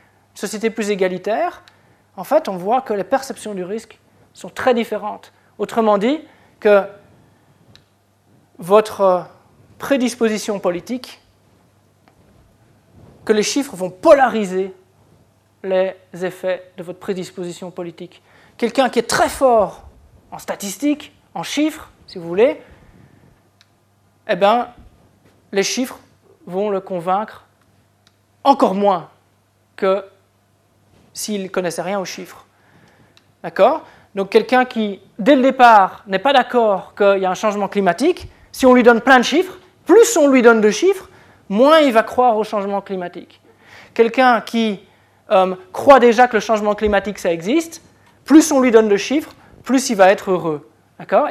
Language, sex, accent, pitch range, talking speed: French, male, French, 185-250 Hz, 140 wpm